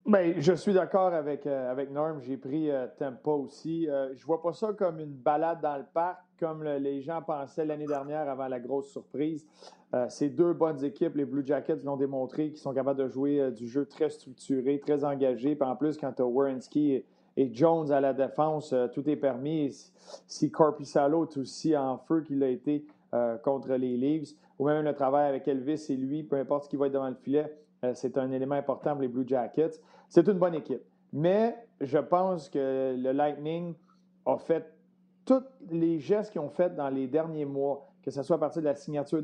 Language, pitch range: French, 140-165 Hz